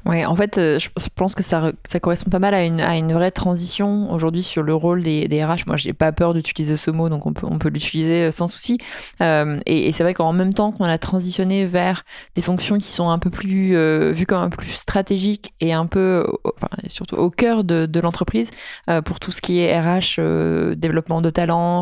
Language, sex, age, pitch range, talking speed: French, female, 20-39, 160-185 Hz, 235 wpm